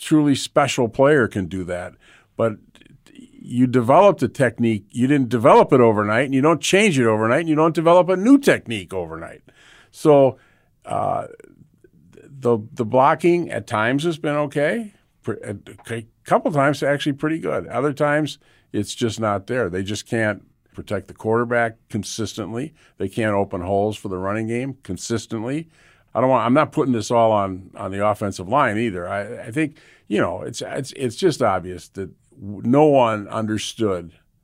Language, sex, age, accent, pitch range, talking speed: English, male, 50-69, American, 95-130 Hz, 165 wpm